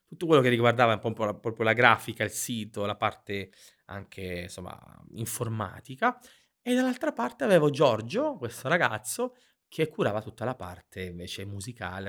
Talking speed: 165 wpm